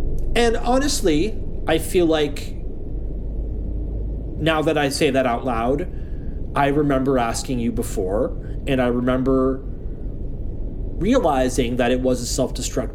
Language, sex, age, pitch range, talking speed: English, male, 30-49, 95-135 Hz, 120 wpm